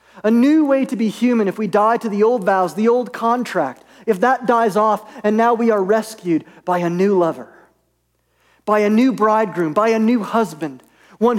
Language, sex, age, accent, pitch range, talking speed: English, male, 40-59, American, 190-240 Hz, 200 wpm